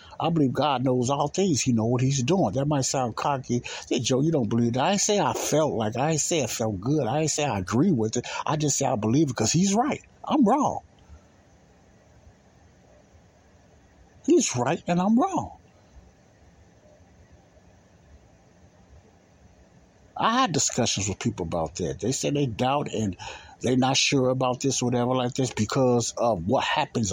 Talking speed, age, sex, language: 180 wpm, 60-79, male, English